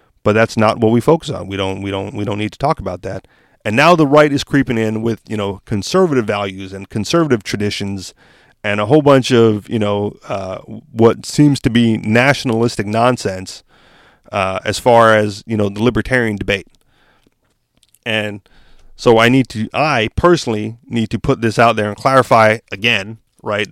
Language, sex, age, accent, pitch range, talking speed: English, male, 30-49, American, 105-125 Hz, 185 wpm